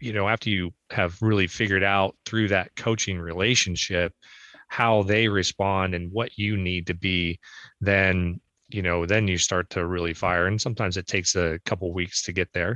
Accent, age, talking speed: American, 30-49, 195 wpm